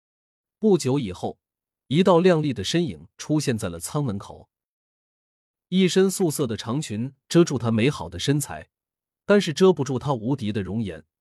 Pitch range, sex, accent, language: 105-155 Hz, male, native, Chinese